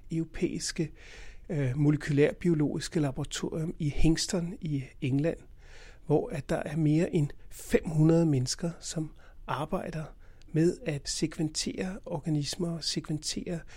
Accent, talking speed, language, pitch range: native, 100 wpm, Danish, 145-170 Hz